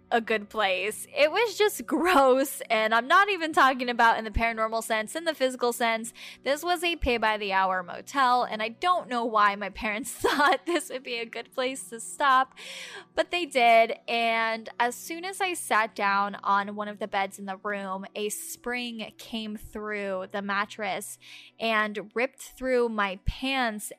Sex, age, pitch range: female, 10-29, 210-260 Hz